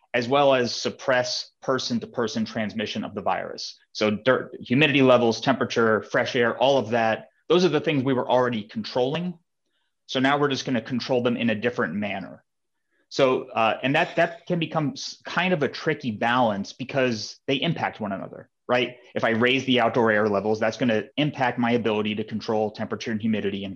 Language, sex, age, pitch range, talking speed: English, male, 30-49, 110-135 Hz, 190 wpm